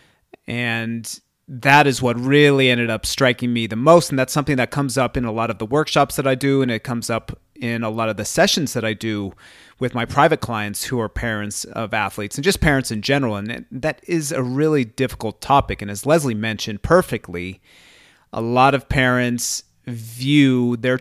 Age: 30-49